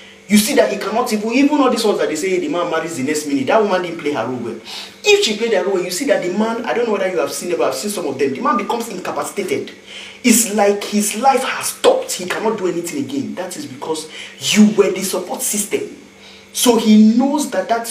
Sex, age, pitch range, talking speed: male, 40-59, 135-220 Hz, 260 wpm